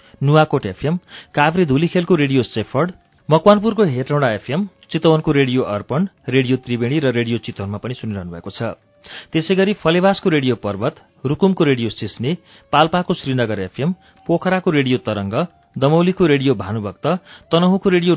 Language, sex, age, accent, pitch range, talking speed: English, male, 40-59, Indian, 120-165 Hz, 130 wpm